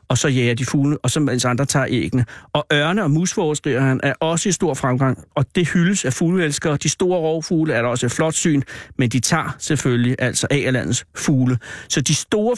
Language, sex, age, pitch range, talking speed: Danish, male, 60-79, 130-170 Hz, 220 wpm